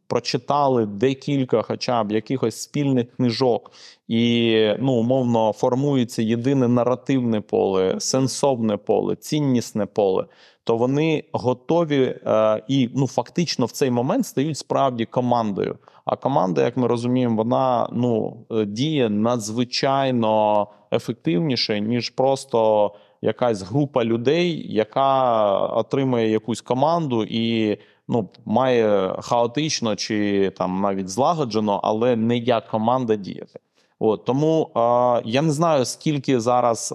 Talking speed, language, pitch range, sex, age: 115 wpm, Ukrainian, 110-135 Hz, male, 30-49